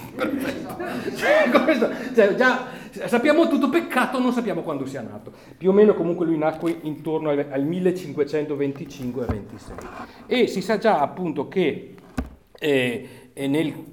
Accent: native